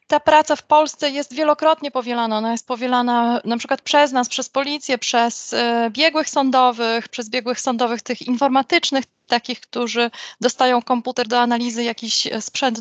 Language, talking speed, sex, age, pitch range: Polish, 150 wpm, female, 20-39, 230-265 Hz